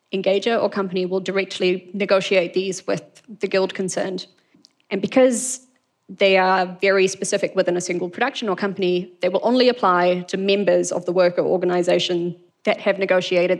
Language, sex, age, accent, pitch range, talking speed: English, female, 20-39, Australian, 180-210 Hz, 160 wpm